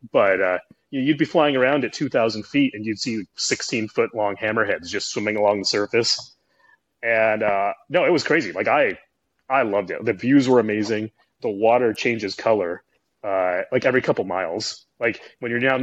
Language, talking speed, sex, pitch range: English, 185 wpm, male, 100-125 Hz